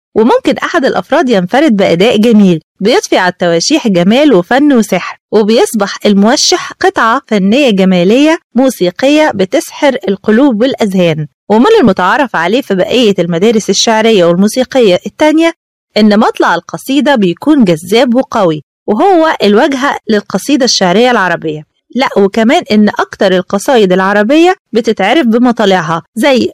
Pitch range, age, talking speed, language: 195-275 Hz, 20-39, 115 wpm, Arabic